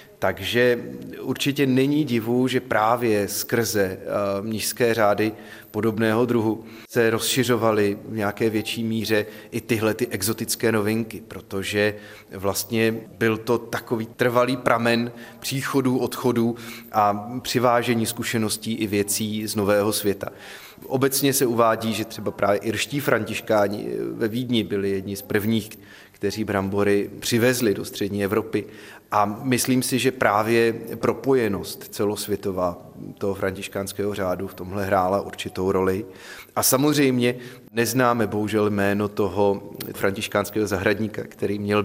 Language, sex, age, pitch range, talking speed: Czech, male, 30-49, 100-120 Hz, 120 wpm